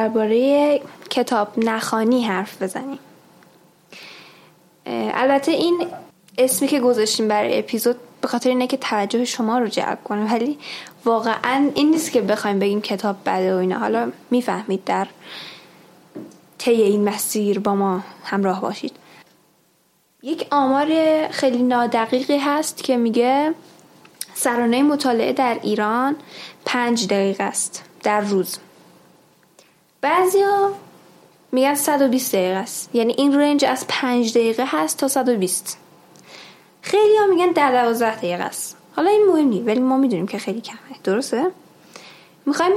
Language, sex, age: Persian, female, 10-29